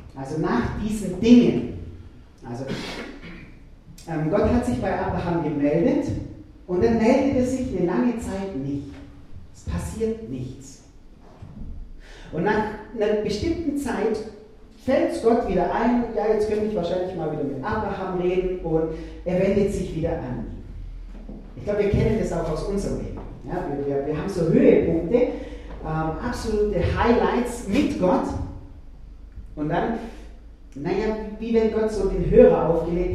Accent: German